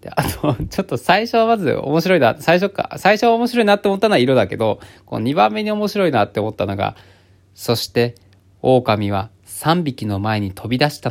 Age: 20-39